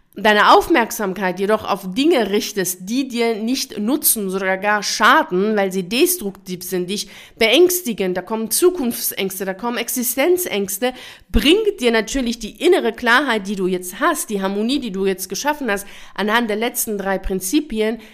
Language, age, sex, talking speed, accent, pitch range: German, 50-69, female, 155 wpm, German, 195-245 Hz